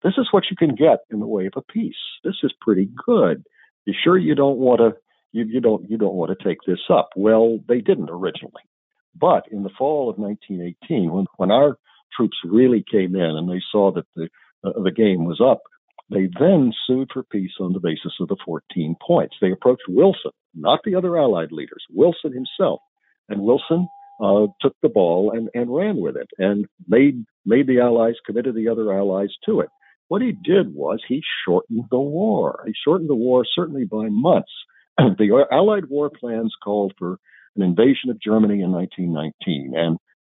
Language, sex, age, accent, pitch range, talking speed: English, male, 60-79, American, 90-135 Hz, 185 wpm